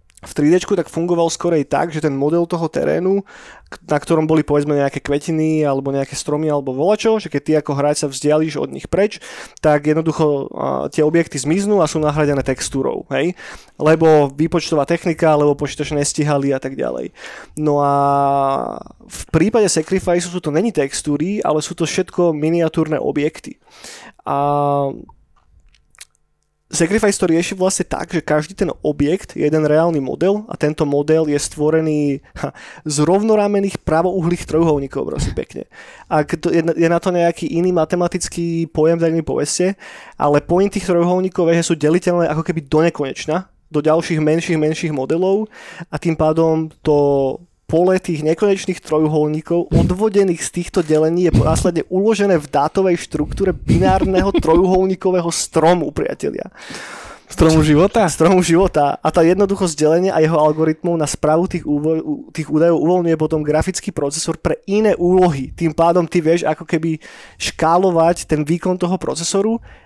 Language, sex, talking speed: Slovak, male, 150 wpm